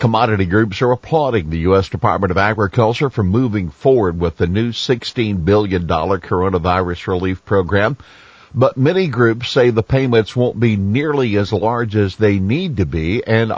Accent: American